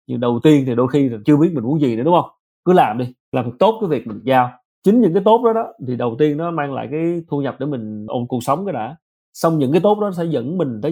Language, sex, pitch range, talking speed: Vietnamese, male, 130-180 Hz, 300 wpm